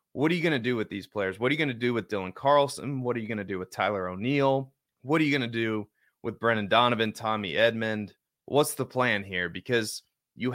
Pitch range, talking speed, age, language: 110-135 Hz, 250 wpm, 30-49, English